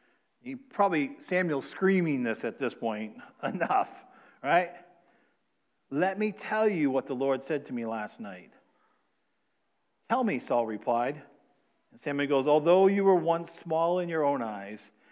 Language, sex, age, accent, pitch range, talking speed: English, male, 40-59, American, 125-165 Hz, 150 wpm